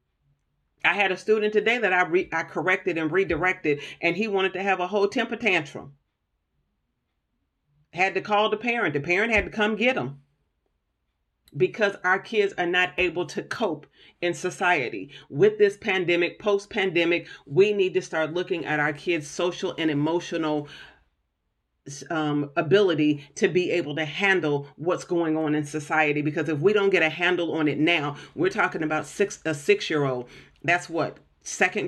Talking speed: 170 wpm